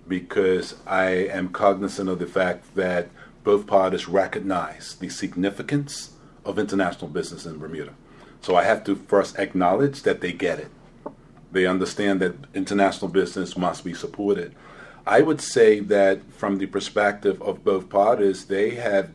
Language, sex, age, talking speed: English, male, 40-59, 150 wpm